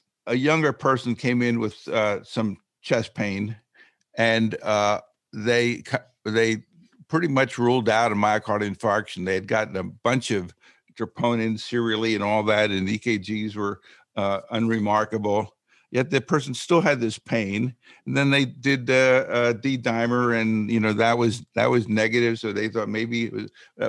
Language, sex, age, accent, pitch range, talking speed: English, male, 60-79, American, 110-130 Hz, 165 wpm